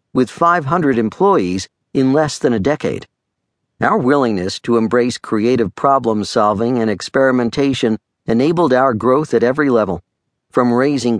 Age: 50-69